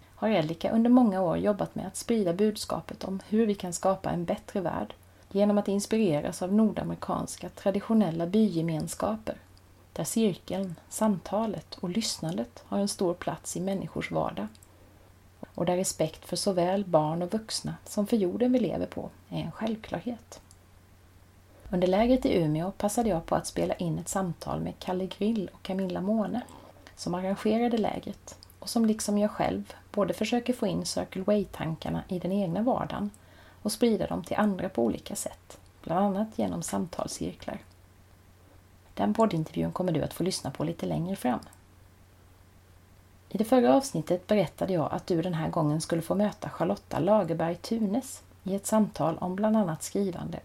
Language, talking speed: Swedish, 160 wpm